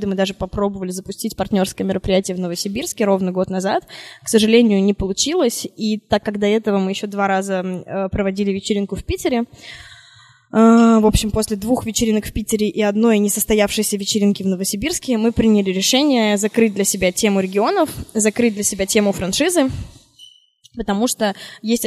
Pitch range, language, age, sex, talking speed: 195-220 Hz, Russian, 10-29, female, 155 wpm